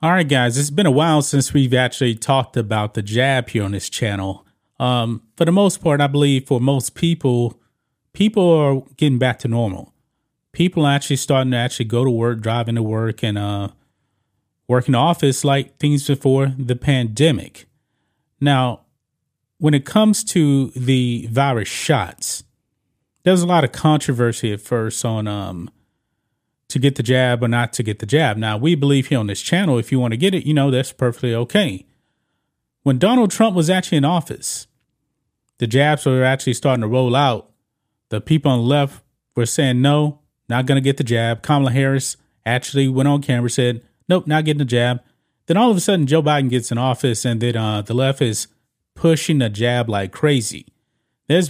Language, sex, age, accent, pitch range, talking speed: English, male, 30-49, American, 115-145 Hz, 190 wpm